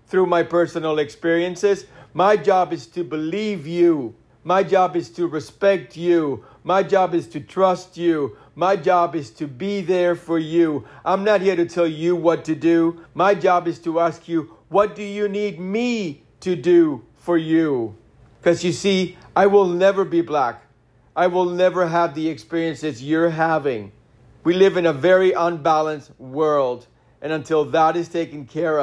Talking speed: 175 wpm